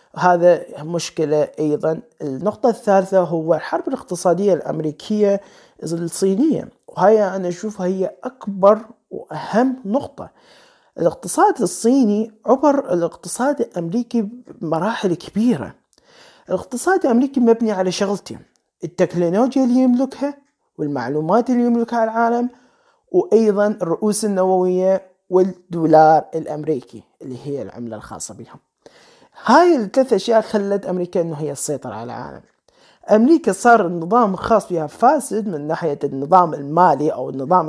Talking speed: 110 wpm